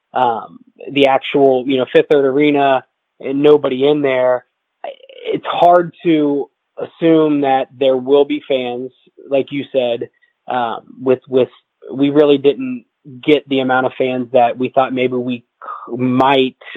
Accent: American